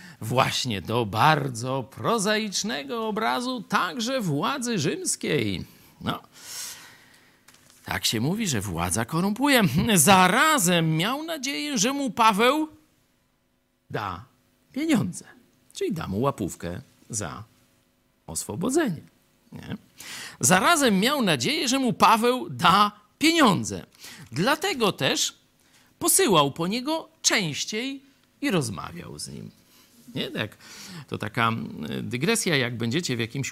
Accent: native